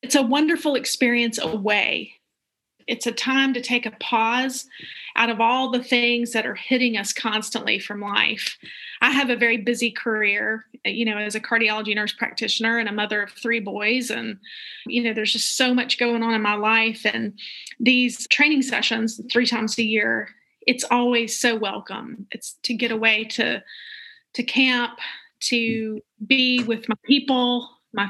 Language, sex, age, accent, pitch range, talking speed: English, female, 30-49, American, 220-245 Hz, 170 wpm